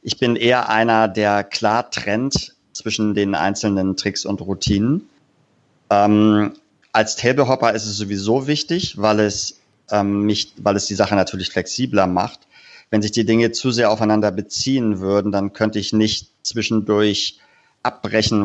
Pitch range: 100-115 Hz